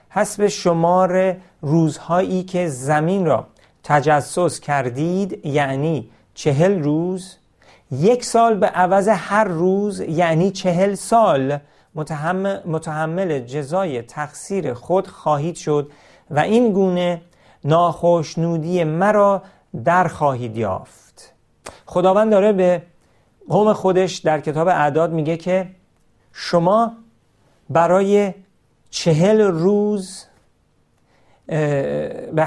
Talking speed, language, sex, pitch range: 90 wpm, Persian, male, 150-190 Hz